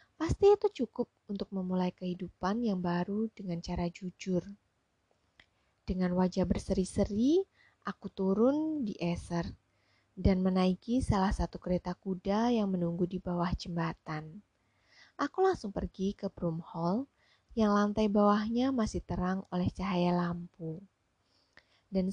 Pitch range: 165-215 Hz